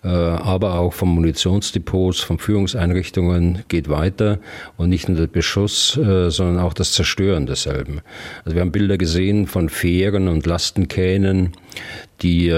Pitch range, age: 85-100 Hz, 40-59